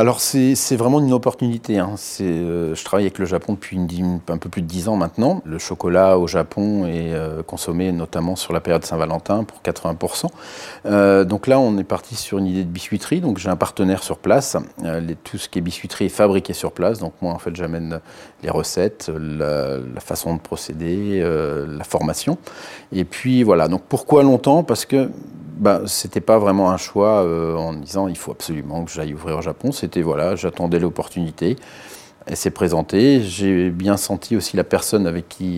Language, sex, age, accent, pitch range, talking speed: French, male, 30-49, French, 85-100 Hz, 205 wpm